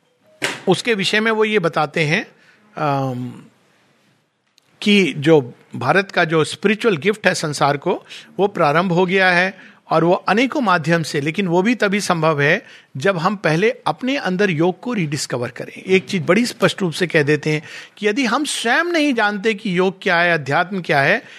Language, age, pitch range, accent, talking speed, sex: Hindi, 50-69, 160-210 Hz, native, 180 wpm, male